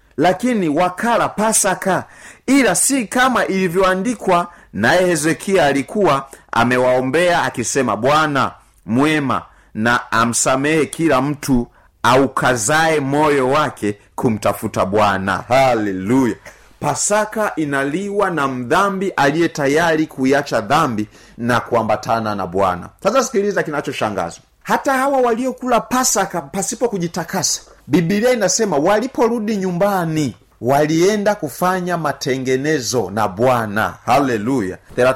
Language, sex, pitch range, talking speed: Swahili, male, 125-190 Hz, 95 wpm